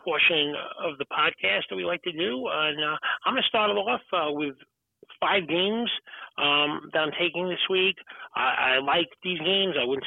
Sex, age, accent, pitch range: male, 40-59, American, 130-160 Hz